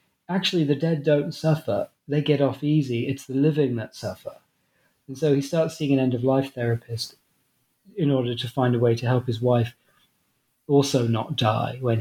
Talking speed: 190 wpm